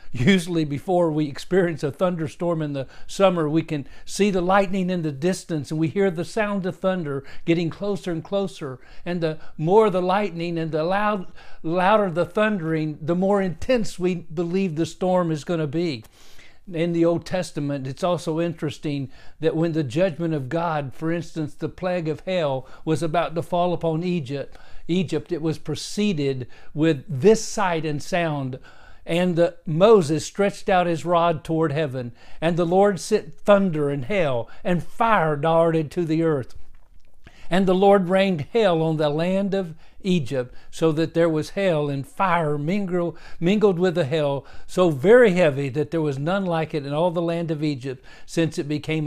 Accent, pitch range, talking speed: American, 155-185 Hz, 175 wpm